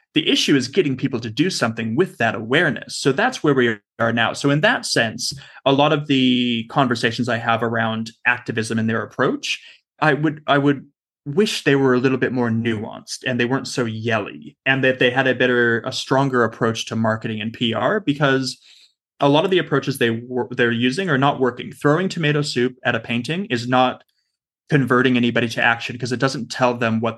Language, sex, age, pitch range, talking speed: English, male, 20-39, 120-145 Hz, 210 wpm